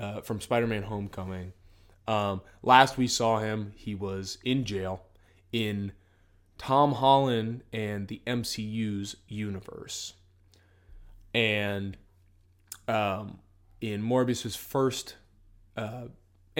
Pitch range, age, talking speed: 95-120 Hz, 20-39, 95 wpm